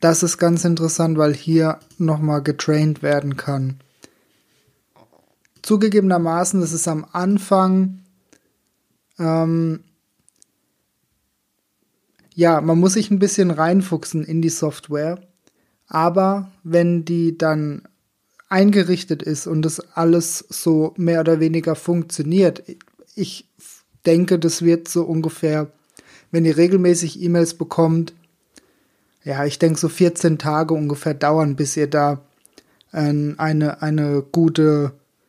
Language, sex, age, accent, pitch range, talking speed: German, male, 20-39, German, 155-180 Hz, 110 wpm